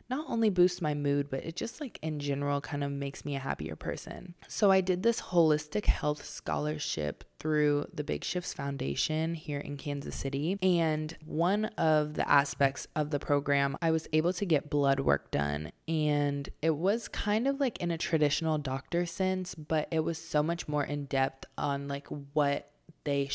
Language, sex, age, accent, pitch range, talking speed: English, female, 20-39, American, 140-170 Hz, 190 wpm